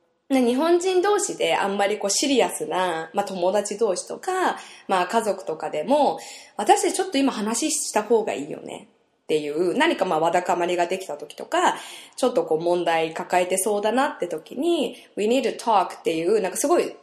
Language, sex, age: Japanese, female, 20-39